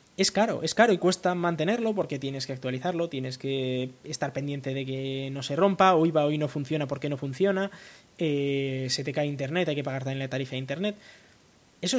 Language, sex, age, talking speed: Spanish, male, 20-39, 210 wpm